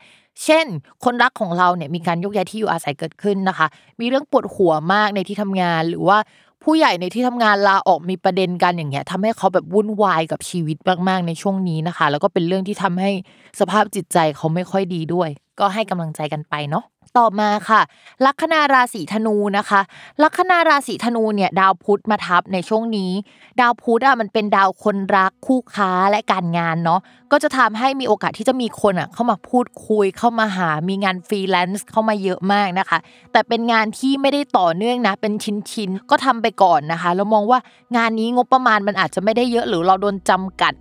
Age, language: 20-39, Thai